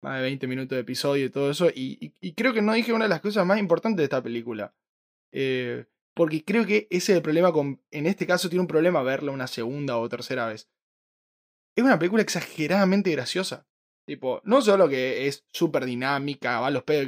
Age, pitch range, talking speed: 20-39, 130-185 Hz, 220 wpm